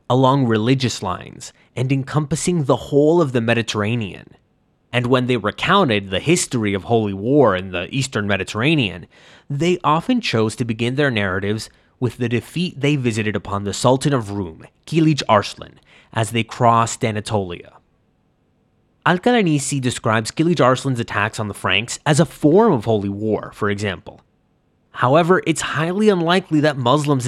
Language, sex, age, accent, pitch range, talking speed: English, male, 20-39, American, 110-155 Hz, 150 wpm